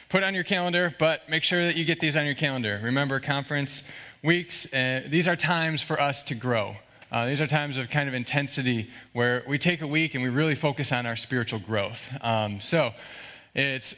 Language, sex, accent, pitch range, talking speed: English, male, American, 130-160 Hz, 210 wpm